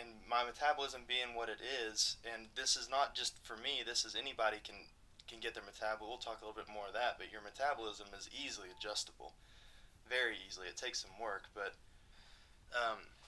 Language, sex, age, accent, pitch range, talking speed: English, male, 20-39, American, 100-115 Hz, 200 wpm